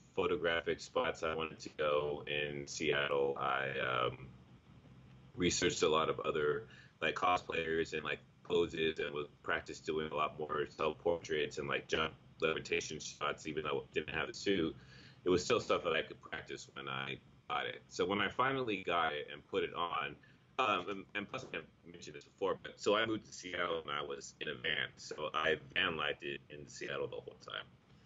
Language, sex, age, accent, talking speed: English, male, 30-49, American, 195 wpm